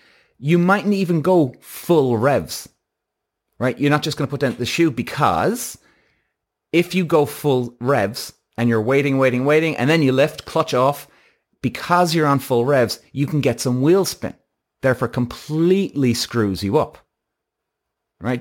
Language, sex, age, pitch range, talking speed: English, male, 30-49, 120-160 Hz, 165 wpm